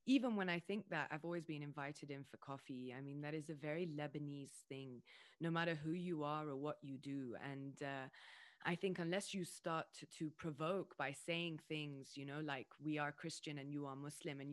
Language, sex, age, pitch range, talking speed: English, female, 20-39, 150-180 Hz, 220 wpm